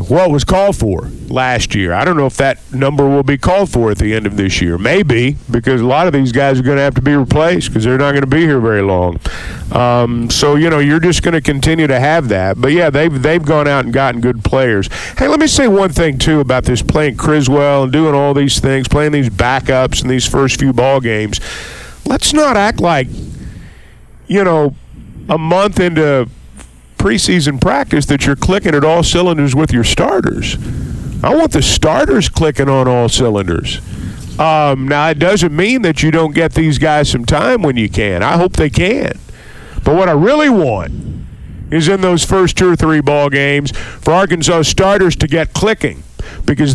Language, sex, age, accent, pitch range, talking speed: English, male, 50-69, American, 125-170 Hz, 210 wpm